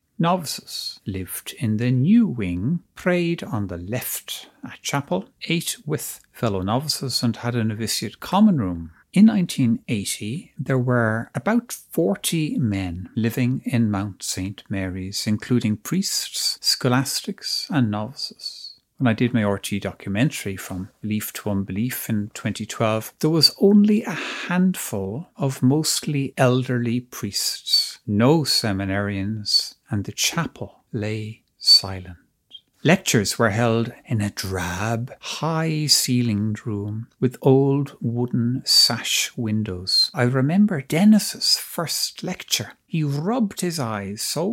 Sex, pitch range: male, 105-165 Hz